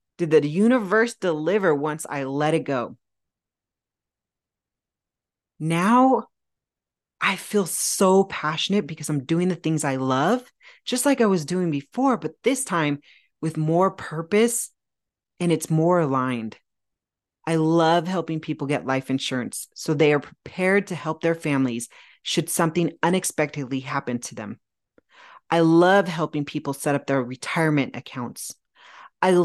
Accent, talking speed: American, 140 wpm